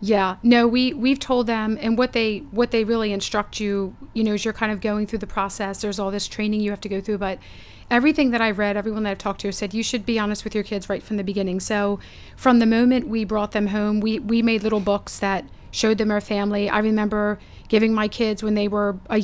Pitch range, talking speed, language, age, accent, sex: 200-220 Hz, 255 wpm, English, 30-49, American, female